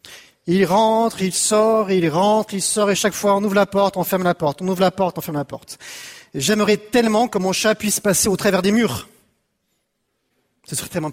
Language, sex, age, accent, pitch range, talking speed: French, male, 40-59, French, 180-225 Hz, 220 wpm